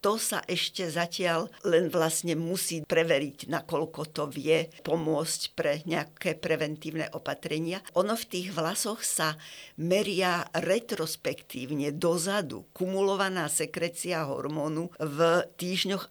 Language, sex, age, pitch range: Slovak, female, 60-79, 160-185 Hz